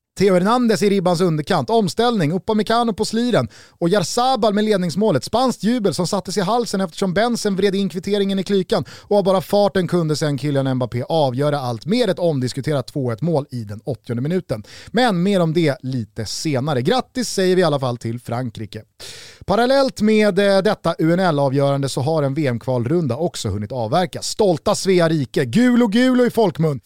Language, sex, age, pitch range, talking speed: Swedish, male, 30-49, 135-205 Hz, 165 wpm